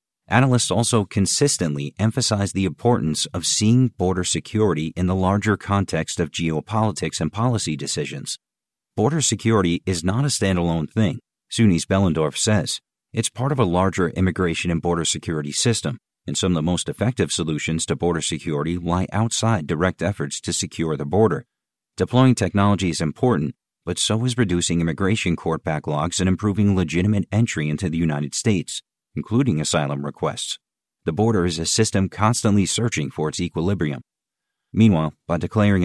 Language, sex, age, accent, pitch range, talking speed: English, male, 50-69, American, 80-105 Hz, 155 wpm